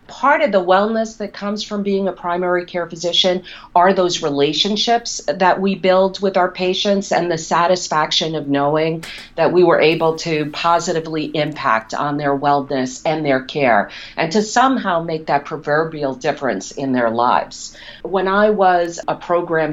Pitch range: 140-185 Hz